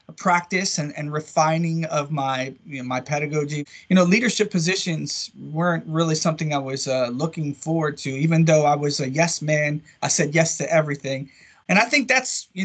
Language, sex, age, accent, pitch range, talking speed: English, male, 30-49, American, 140-175 Hz, 190 wpm